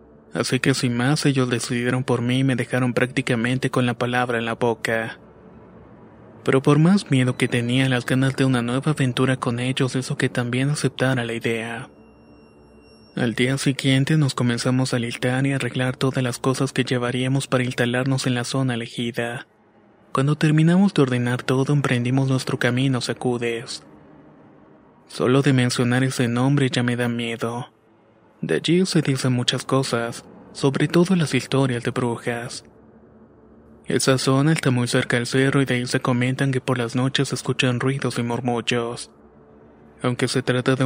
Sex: male